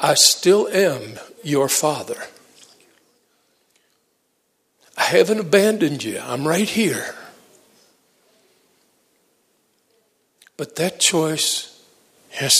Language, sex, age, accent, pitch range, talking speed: English, male, 60-79, American, 130-170 Hz, 75 wpm